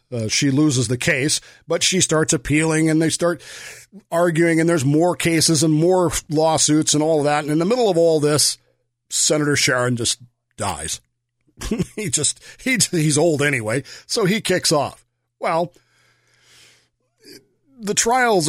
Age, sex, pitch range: 40-59, male, 140-180 Hz